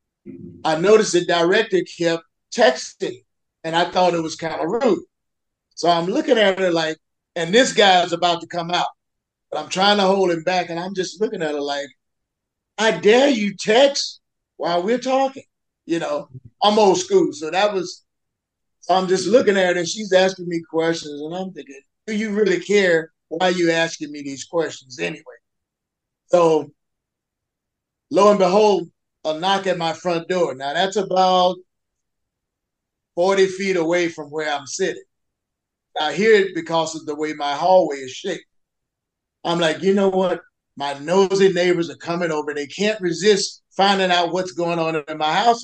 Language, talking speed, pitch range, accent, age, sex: English, 175 wpm, 155-195 Hz, American, 50-69, male